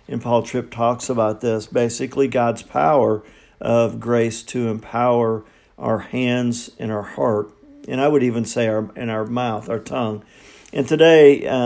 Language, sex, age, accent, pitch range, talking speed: English, male, 50-69, American, 110-125 Hz, 165 wpm